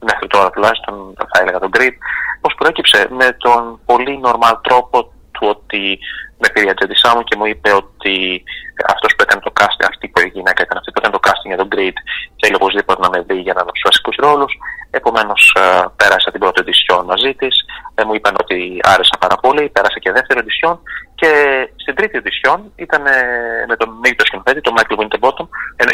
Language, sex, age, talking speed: Greek, male, 30-49, 195 wpm